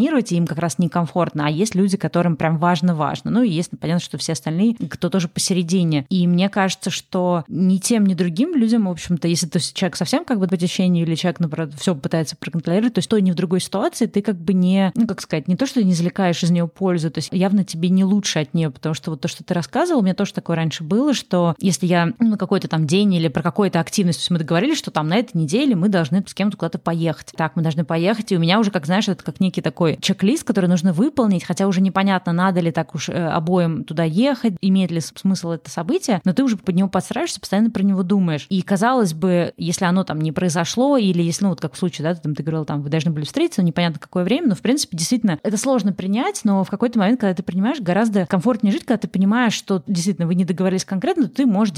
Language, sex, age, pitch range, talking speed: Russian, female, 20-39, 170-205 Hz, 255 wpm